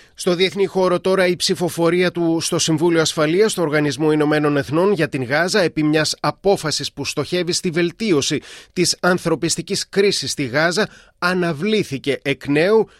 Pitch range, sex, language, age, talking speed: 140-170 Hz, male, Greek, 30-49, 150 wpm